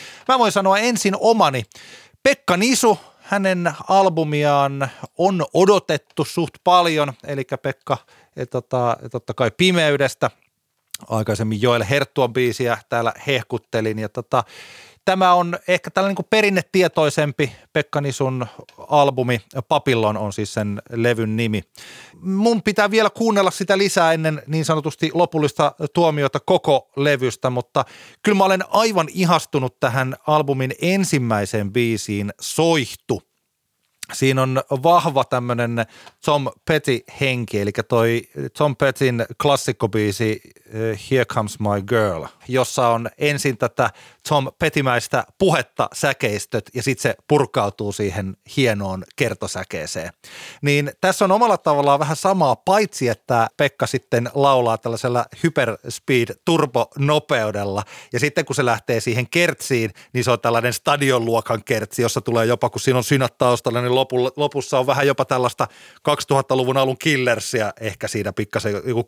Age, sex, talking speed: 30-49, male, 130 wpm